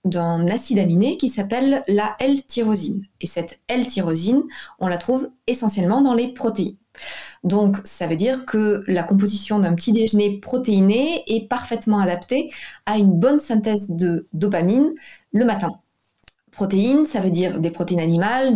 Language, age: French, 20-39